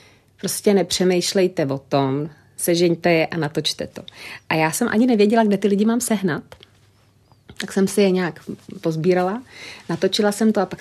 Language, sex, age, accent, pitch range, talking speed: Czech, female, 30-49, native, 170-200 Hz, 165 wpm